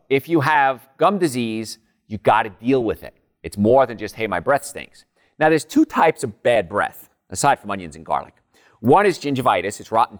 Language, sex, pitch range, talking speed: English, male, 110-155 Hz, 205 wpm